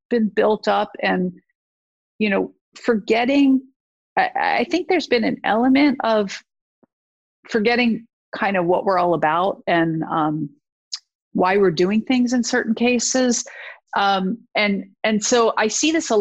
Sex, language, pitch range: female, English, 175-220 Hz